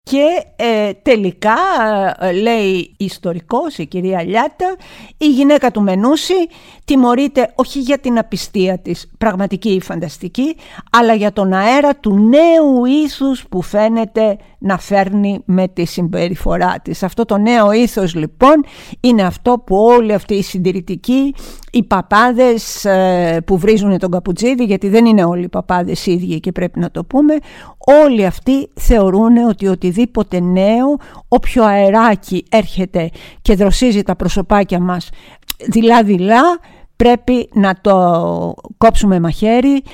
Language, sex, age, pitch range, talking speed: Greek, female, 50-69, 185-240 Hz, 130 wpm